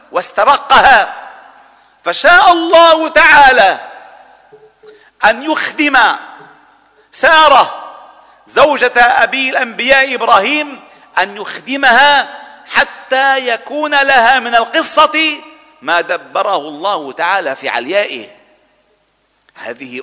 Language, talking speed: Arabic, 75 wpm